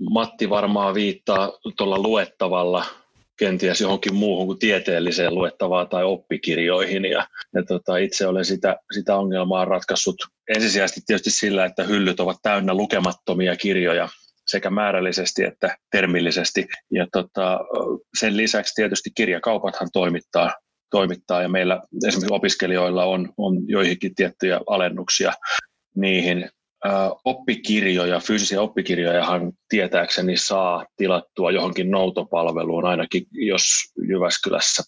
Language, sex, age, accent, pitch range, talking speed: Finnish, male, 30-49, native, 90-95 Hz, 100 wpm